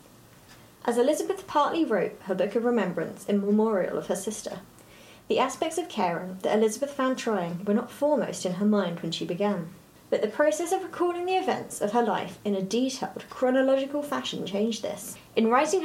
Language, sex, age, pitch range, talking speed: English, female, 30-49, 190-255 Hz, 185 wpm